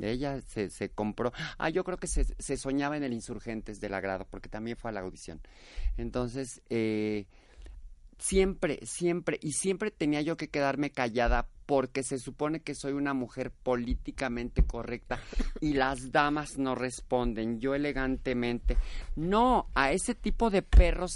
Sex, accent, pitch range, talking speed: male, Mexican, 115-145 Hz, 155 wpm